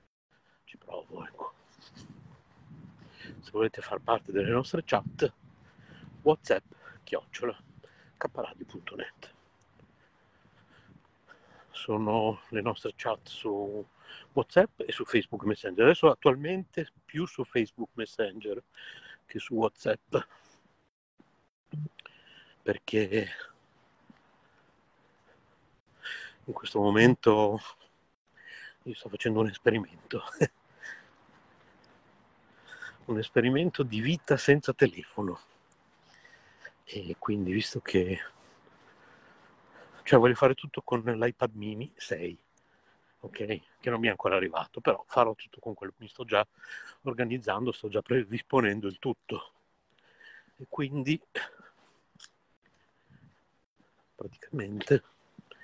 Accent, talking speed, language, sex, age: native, 90 wpm, Italian, male, 50-69